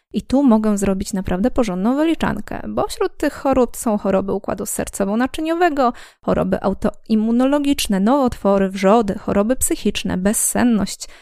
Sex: female